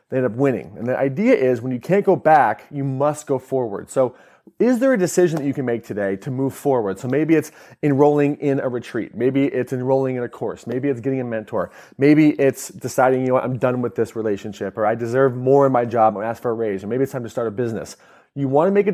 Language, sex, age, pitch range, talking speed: English, male, 30-49, 120-145 Hz, 265 wpm